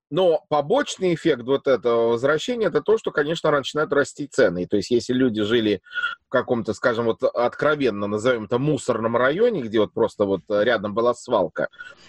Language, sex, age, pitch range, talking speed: English, male, 30-49, 115-165 Hz, 175 wpm